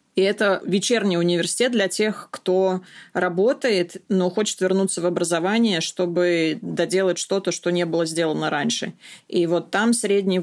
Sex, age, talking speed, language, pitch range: female, 20-39, 145 wpm, Russian, 175-195 Hz